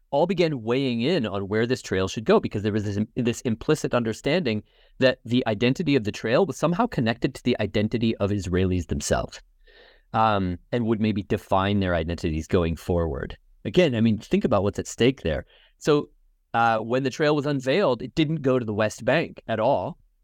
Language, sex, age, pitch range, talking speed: English, male, 30-49, 100-130 Hz, 195 wpm